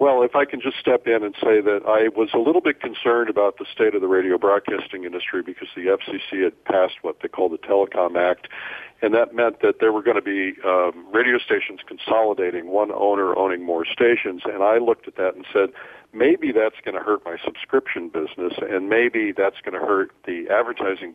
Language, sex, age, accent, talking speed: English, male, 50-69, American, 215 wpm